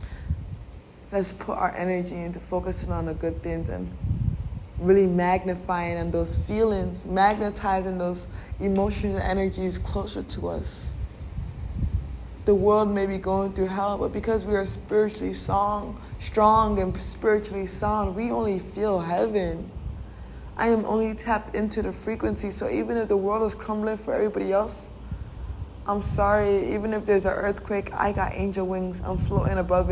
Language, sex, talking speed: English, female, 150 wpm